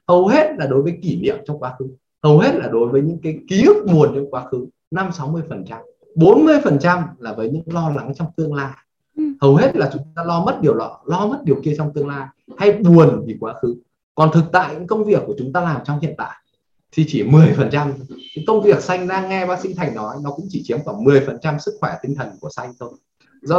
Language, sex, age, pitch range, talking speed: Vietnamese, male, 20-39, 140-185 Hz, 250 wpm